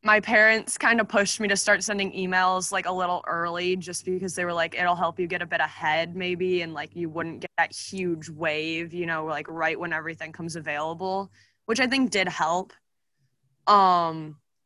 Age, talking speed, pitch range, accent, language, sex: 20-39, 200 wpm, 160-200 Hz, American, English, female